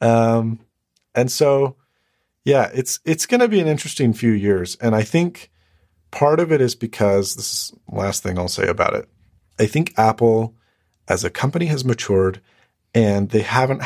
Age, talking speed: 40-59, 180 wpm